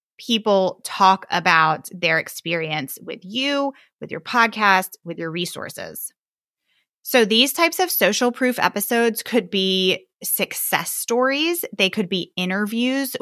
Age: 20-39